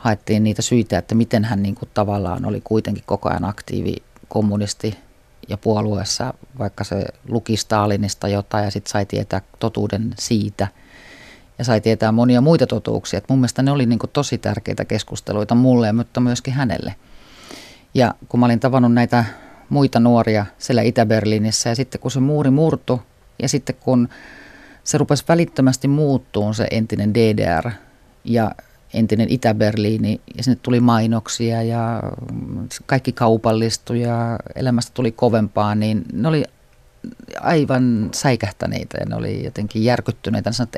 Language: Finnish